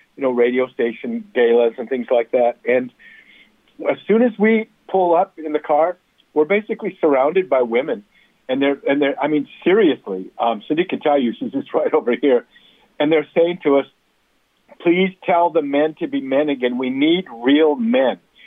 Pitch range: 130-180 Hz